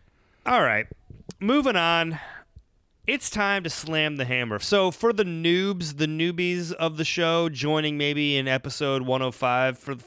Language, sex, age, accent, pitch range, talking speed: English, male, 30-49, American, 125-165 Hz, 155 wpm